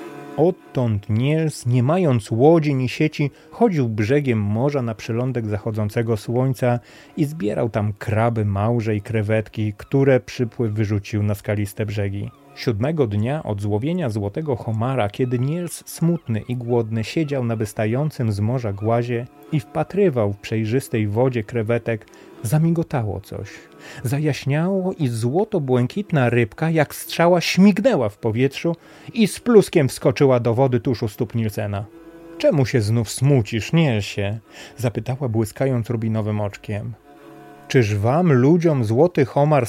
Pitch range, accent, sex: 110-150 Hz, native, male